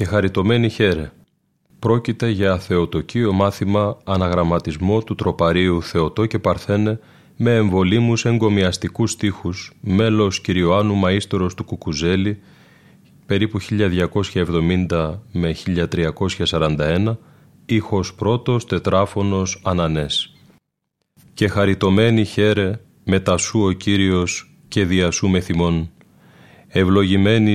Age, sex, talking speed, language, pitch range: 30-49, male, 85 wpm, Greek, 90-105 Hz